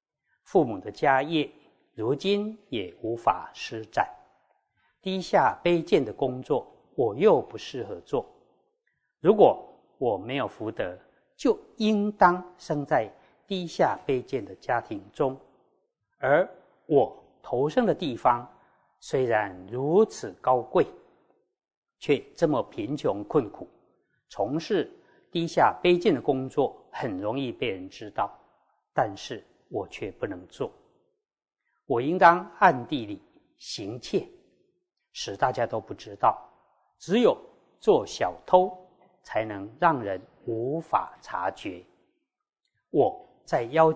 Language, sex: Chinese, male